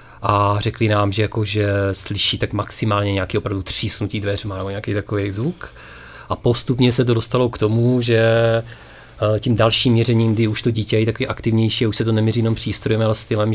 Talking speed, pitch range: 190 wpm, 105-115 Hz